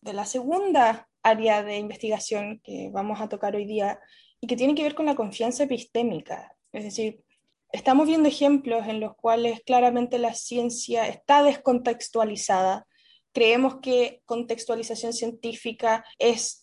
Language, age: Spanish, 10-29